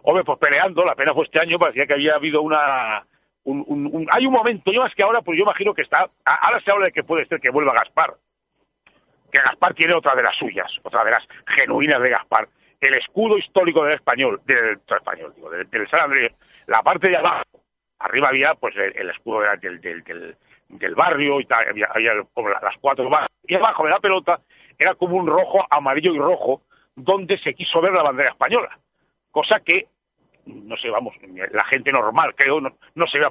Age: 60-79